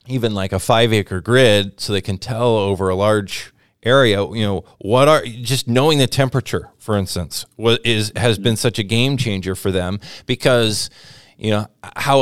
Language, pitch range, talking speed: English, 105-130 Hz, 185 wpm